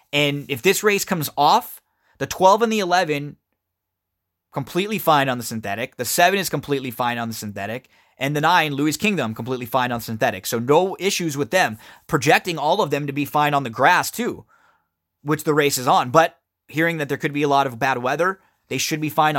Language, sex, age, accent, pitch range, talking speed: English, male, 20-39, American, 100-155 Hz, 215 wpm